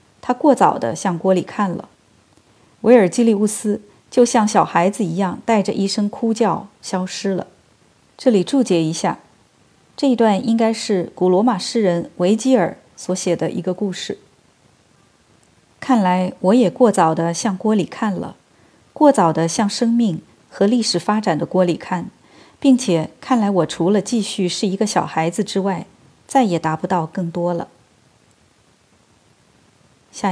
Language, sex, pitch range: Chinese, female, 175-230 Hz